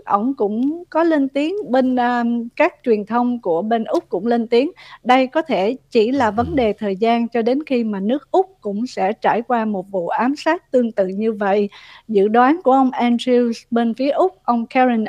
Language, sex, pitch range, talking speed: Vietnamese, female, 210-265 Hz, 205 wpm